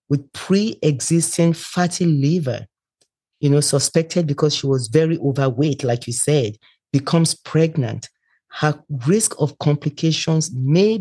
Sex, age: male, 40-59